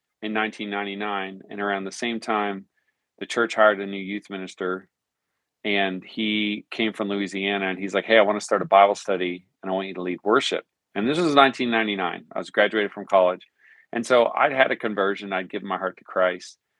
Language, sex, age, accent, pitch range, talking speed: English, male, 40-59, American, 95-110 Hz, 205 wpm